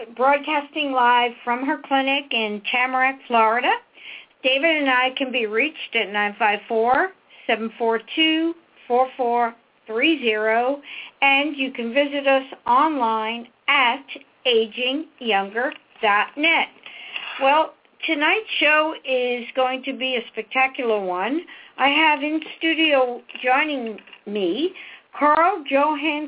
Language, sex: English, female